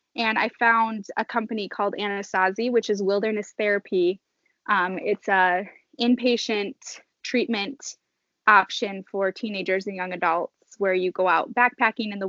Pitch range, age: 190-230 Hz, 10-29